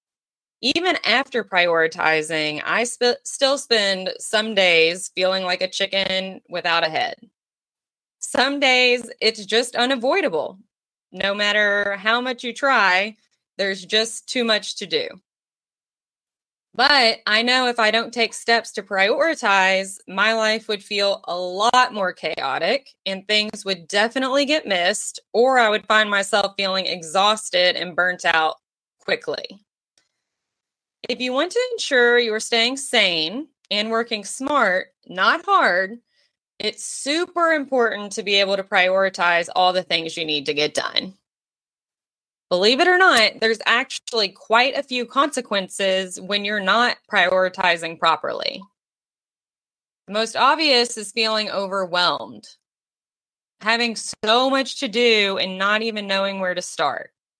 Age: 20-39